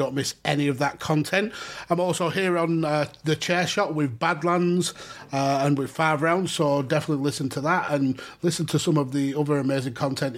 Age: 30-49